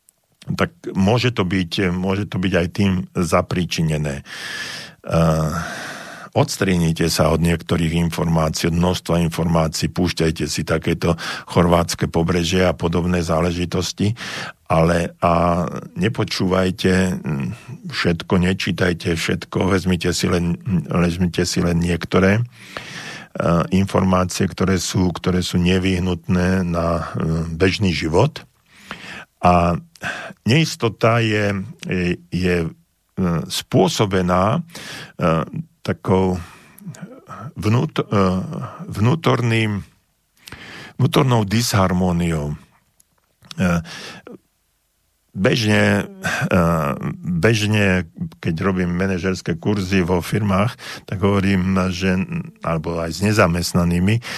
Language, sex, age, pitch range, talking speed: Slovak, male, 50-69, 85-100 Hz, 80 wpm